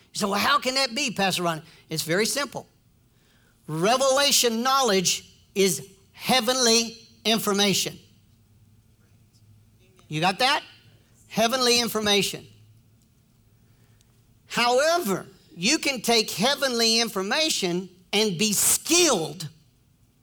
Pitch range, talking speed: 155-245 Hz, 85 wpm